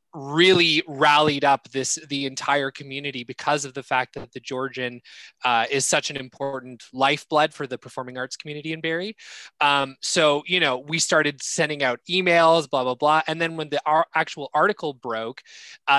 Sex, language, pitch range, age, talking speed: male, English, 130-155 Hz, 20-39, 180 wpm